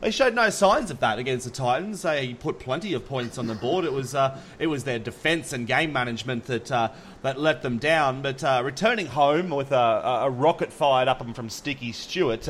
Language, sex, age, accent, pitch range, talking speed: English, male, 30-49, Australian, 130-165 Hz, 220 wpm